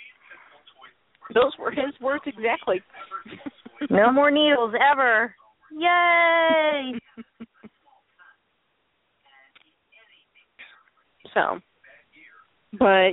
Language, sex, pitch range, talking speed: English, female, 215-285 Hz, 55 wpm